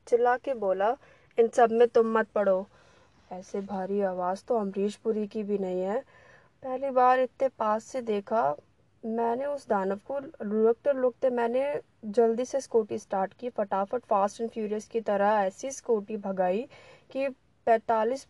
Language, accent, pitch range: Hindi, native, 200-245 Hz